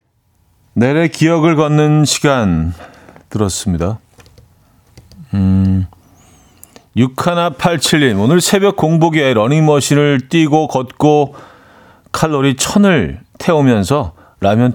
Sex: male